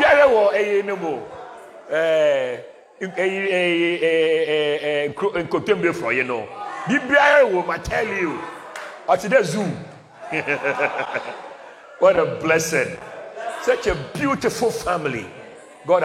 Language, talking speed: English, 35 wpm